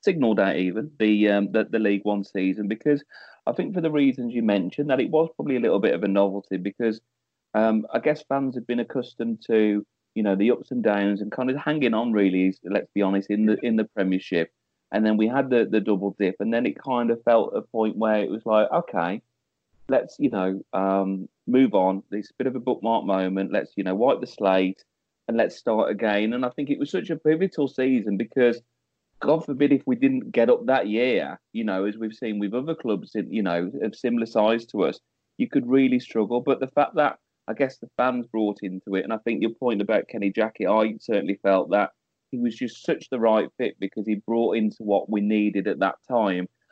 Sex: male